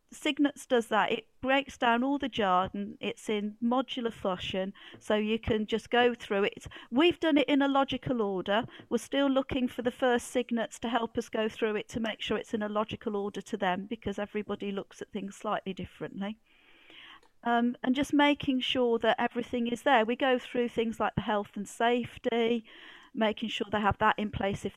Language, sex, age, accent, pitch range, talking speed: English, female, 40-59, British, 210-255 Hz, 200 wpm